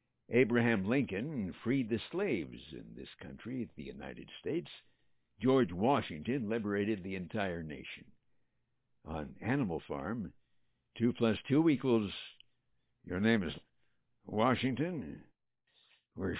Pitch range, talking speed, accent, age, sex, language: 100-130 Hz, 105 wpm, American, 60-79, male, English